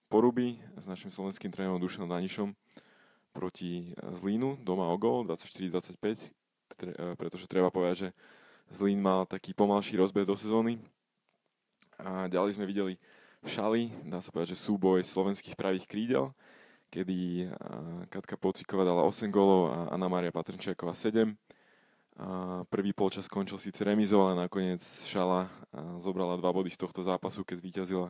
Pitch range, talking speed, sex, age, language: 90-100 Hz, 145 wpm, male, 20-39, Slovak